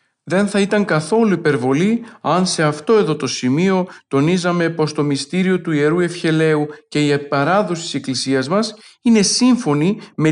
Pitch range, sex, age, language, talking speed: 140-185 Hz, male, 40-59, Greek, 155 wpm